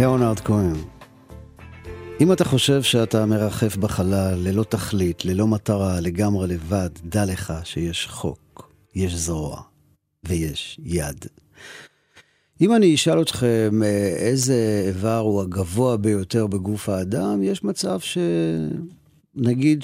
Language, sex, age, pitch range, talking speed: Hebrew, male, 40-59, 95-125 Hz, 110 wpm